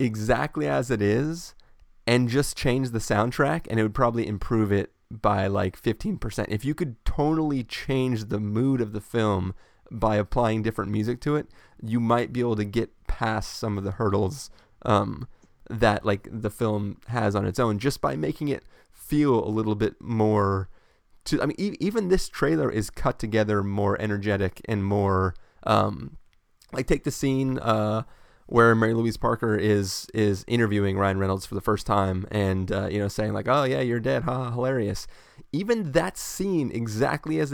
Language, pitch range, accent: English, 105-125 Hz, American